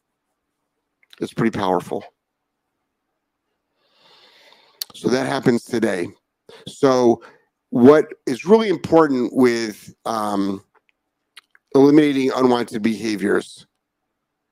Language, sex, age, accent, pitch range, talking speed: English, male, 50-69, American, 110-130 Hz, 70 wpm